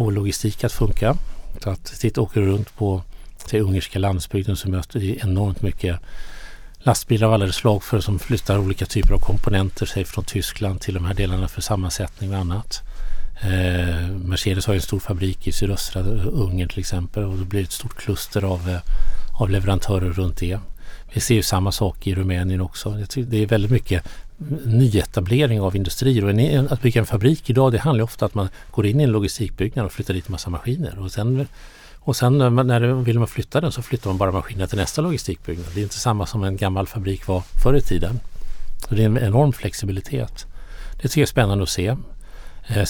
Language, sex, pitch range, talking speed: Swedish, male, 95-115 Hz, 195 wpm